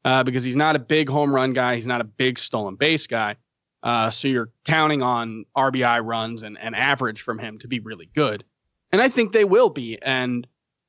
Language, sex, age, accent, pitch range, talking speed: English, male, 30-49, American, 125-160 Hz, 215 wpm